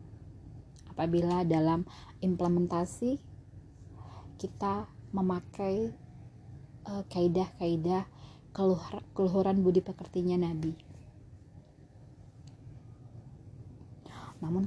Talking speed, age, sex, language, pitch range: 55 wpm, 20-39, female, Indonesian, 130-190 Hz